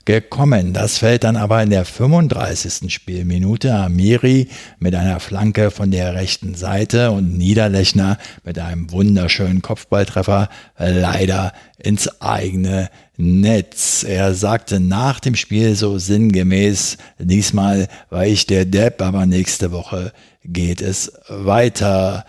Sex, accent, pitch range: male, German, 95-110 Hz